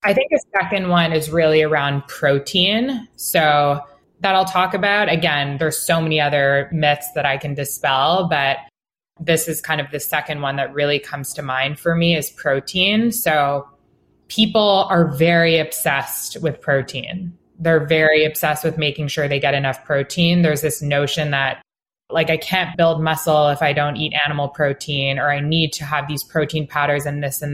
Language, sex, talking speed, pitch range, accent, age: English, female, 185 wpm, 145-175 Hz, American, 20-39